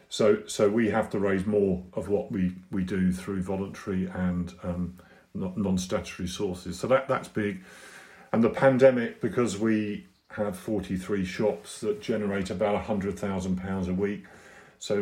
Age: 50-69